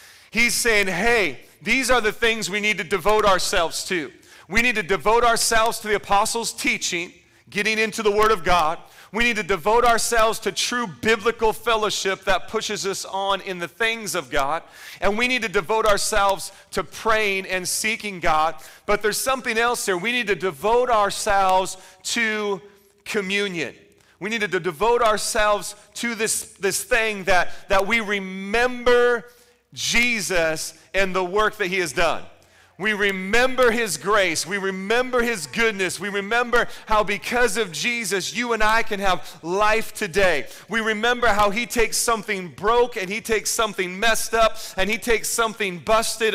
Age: 40-59